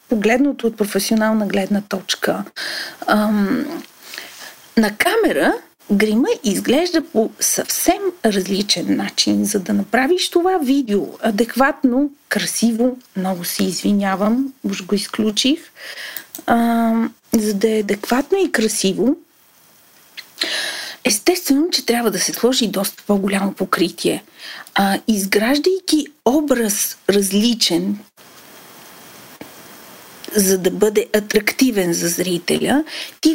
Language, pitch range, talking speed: Bulgarian, 210-285 Hz, 95 wpm